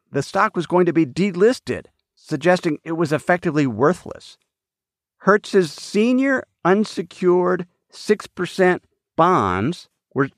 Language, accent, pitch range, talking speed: English, American, 125-185 Hz, 105 wpm